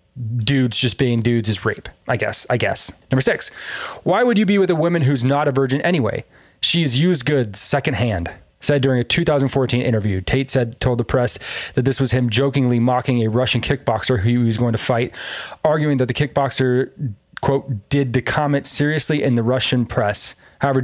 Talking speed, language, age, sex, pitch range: 195 wpm, English, 20-39, male, 115-145 Hz